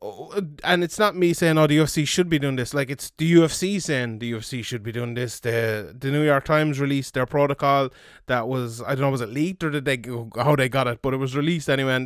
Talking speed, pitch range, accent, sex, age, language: 265 wpm, 135-165 Hz, Irish, male, 20-39, English